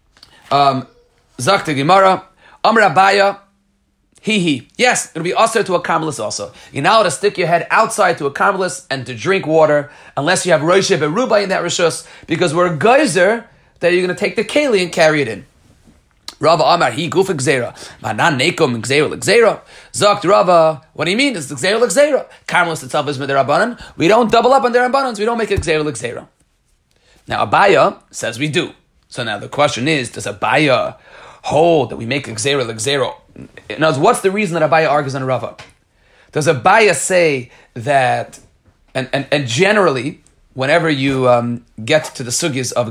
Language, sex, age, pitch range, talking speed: Hebrew, male, 30-49, 140-195 Hz, 160 wpm